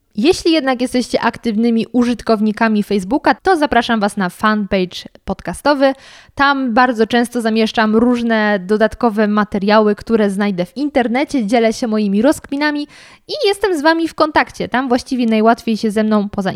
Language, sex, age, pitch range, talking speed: Polish, female, 20-39, 205-265 Hz, 145 wpm